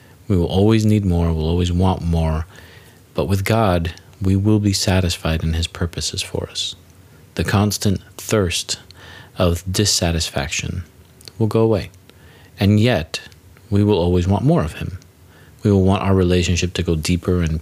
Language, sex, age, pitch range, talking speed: English, male, 40-59, 85-100 Hz, 160 wpm